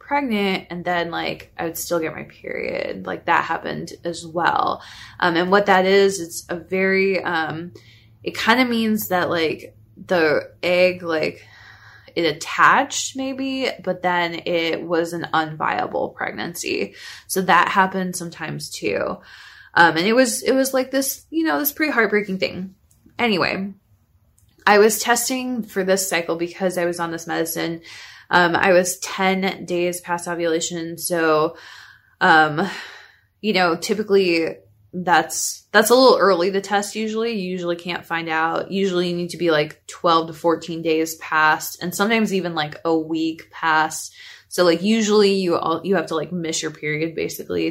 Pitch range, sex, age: 165-200 Hz, female, 20-39